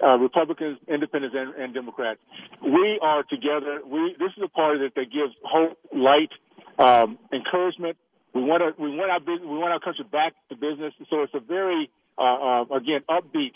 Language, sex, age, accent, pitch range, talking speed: English, male, 50-69, American, 135-165 Hz, 190 wpm